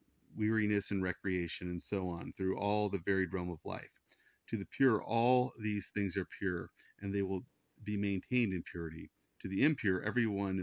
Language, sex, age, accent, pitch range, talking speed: English, male, 40-59, American, 90-110 Hz, 180 wpm